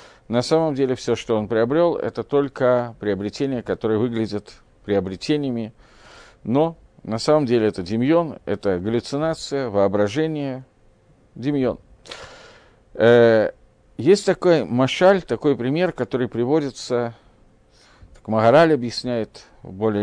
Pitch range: 110-145 Hz